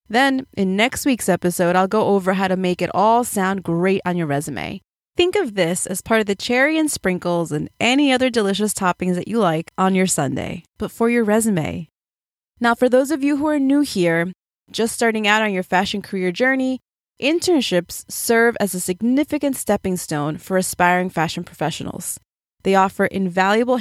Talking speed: 185 wpm